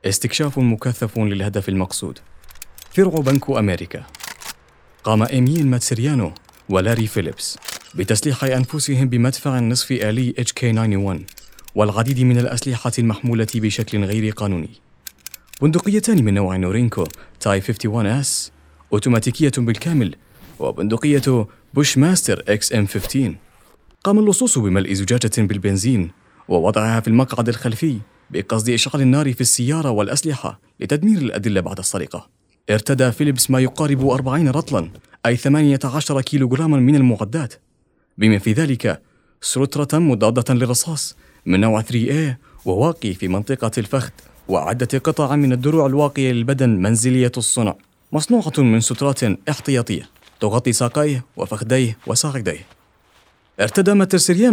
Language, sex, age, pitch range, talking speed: Arabic, male, 30-49, 105-140 Hz, 110 wpm